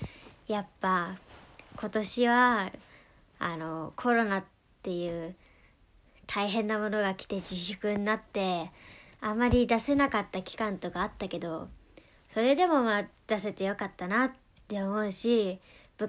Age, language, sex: 20-39, Japanese, male